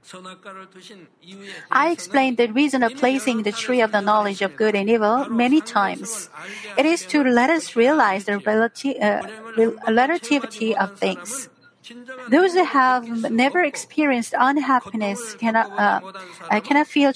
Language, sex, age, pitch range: Korean, female, 40-59, 225-275 Hz